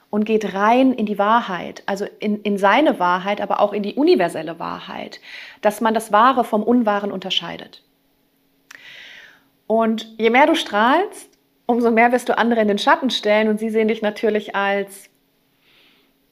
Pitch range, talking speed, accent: 205-240 Hz, 160 wpm, German